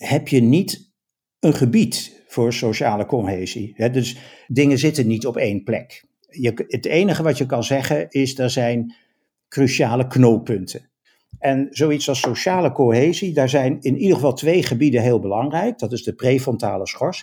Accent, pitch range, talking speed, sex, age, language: Dutch, 115-145 Hz, 155 wpm, male, 50-69, Dutch